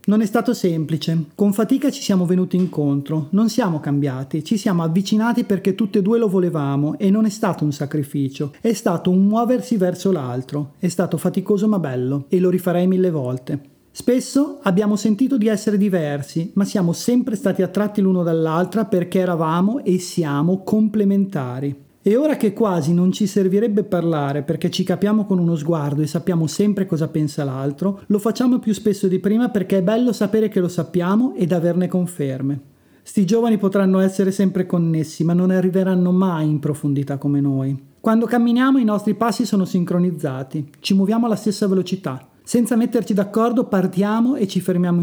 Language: Italian